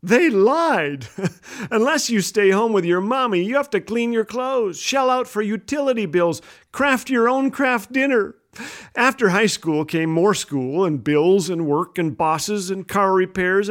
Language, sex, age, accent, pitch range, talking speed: English, male, 40-59, American, 160-245 Hz, 175 wpm